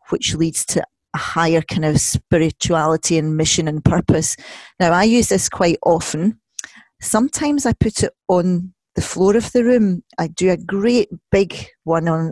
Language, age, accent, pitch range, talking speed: English, 40-59, British, 160-200 Hz, 170 wpm